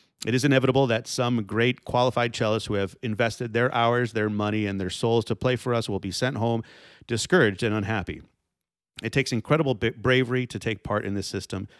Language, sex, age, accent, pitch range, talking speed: English, male, 30-49, American, 105-125 Hz, 200 wpm